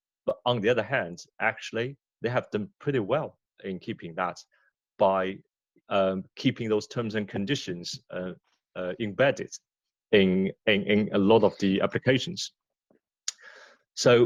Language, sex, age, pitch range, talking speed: English, male, 30-49, 95-130 Hz, 140 wpm